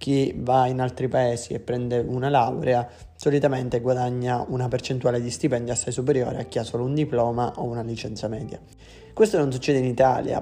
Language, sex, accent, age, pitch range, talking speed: Italian, male, native, 20-39, 120-135 Hz, 185 wpm